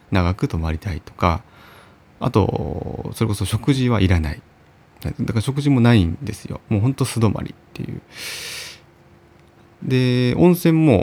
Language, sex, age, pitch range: Japanese, male, 30-49, 95-135 Hz